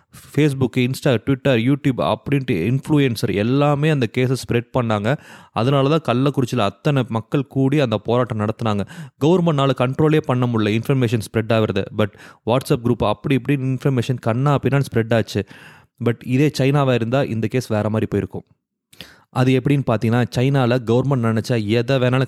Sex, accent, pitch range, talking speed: male, Indian, 110-140 Hz, 130 wpm